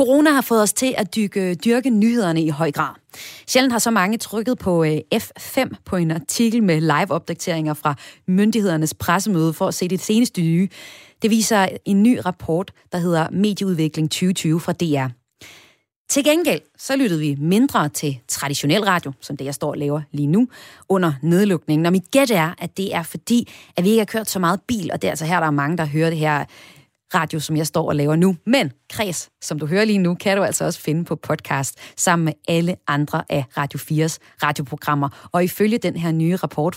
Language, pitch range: Danish, 155-210 Hz